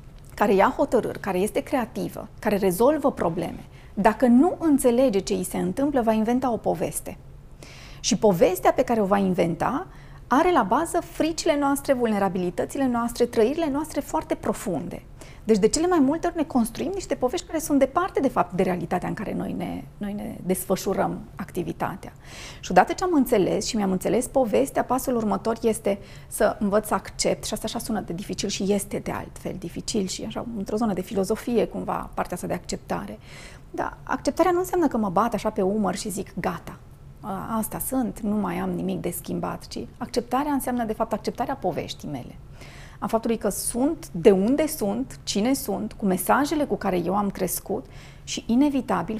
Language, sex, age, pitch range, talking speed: Romanian, female, 30-49, 200-270 Hz, 180 wpm